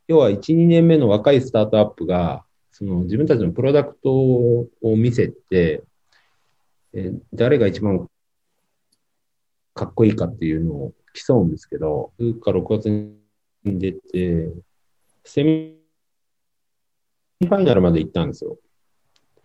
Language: Japanese